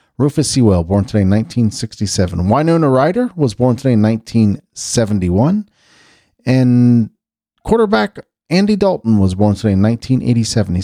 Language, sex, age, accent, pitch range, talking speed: English, male, 30-49, American, 105-150 Hz, 120 wpm